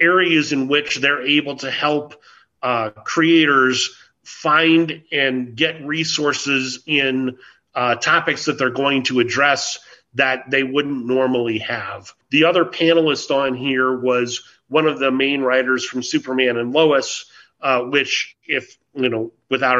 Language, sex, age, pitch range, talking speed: English, male, 30-49, 130-150 Hz, 140 wpm